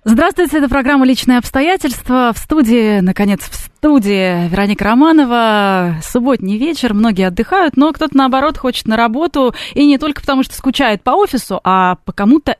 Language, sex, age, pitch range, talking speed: Russian, female, 20-39, 195-265 Hz, 155 wpm